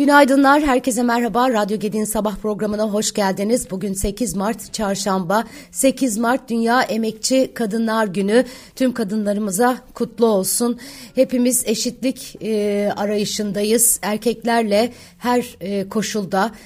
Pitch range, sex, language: 200-230 Hz, female, Turkish